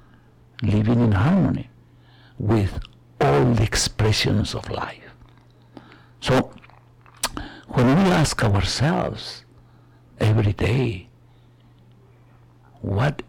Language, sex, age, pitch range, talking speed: English, male, 60-79, 95-120 Hz, 75 wpm